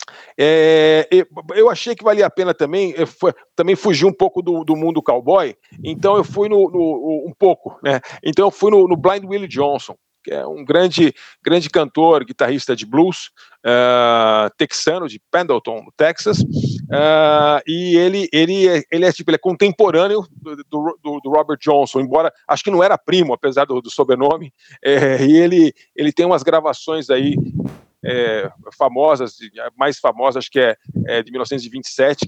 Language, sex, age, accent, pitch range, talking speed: Portuguese, male, 50-69, Brazilian, 135-180 Hz, 170 wpm